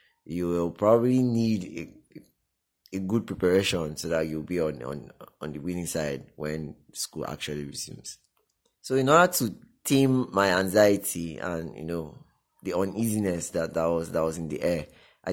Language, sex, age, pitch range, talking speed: English, male, 20-39, 80-110 Hz, 170 wpm